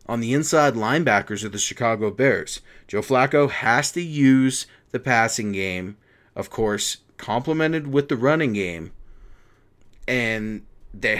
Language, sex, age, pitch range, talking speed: English, male, 30-49, 105-135 Hz, 135 wpm